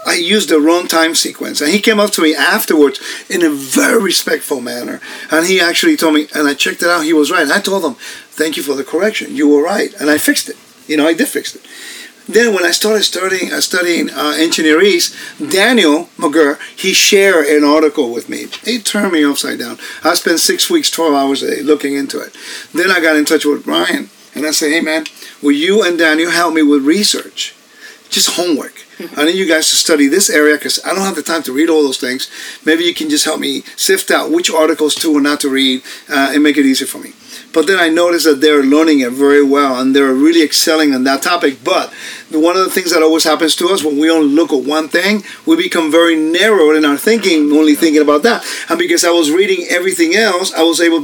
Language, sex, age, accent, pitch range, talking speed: English, male, 50-69, American, 150-200 Hz, 240 wpm